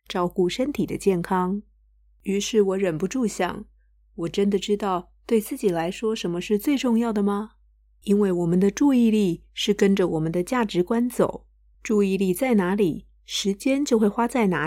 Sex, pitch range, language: female, 175-210 Hz, Chinese